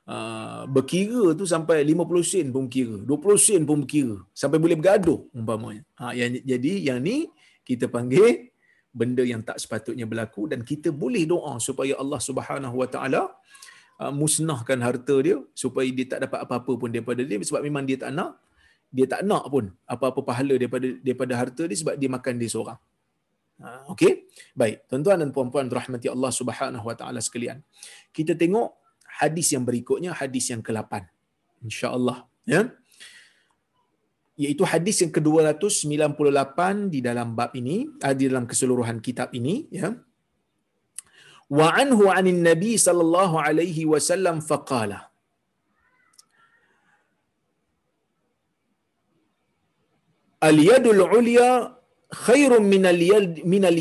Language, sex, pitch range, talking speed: Malayalam, male, 125-175 Hz, 135 wpm